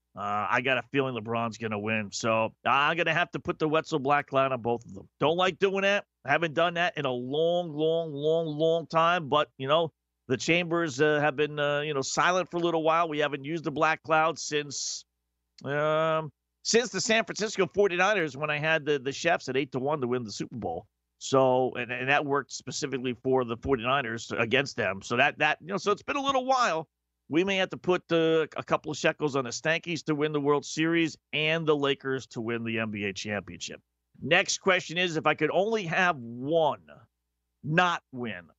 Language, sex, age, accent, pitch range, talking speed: English, male, 50-69, American, 110-160 Hz, 220 wpm